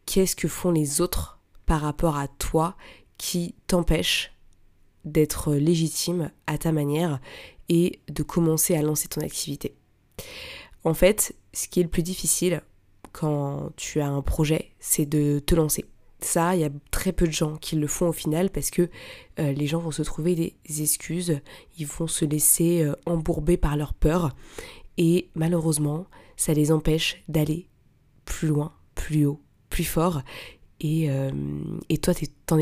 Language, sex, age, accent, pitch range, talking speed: French, female, 20-39, French, 145-170 Hz, 160 wpm